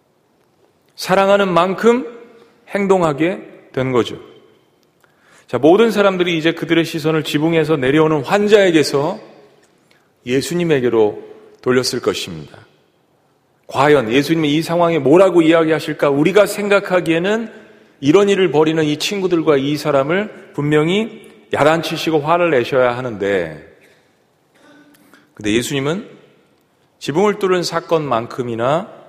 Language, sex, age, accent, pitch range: Korean, male, 40-59, native, 135-190 Hz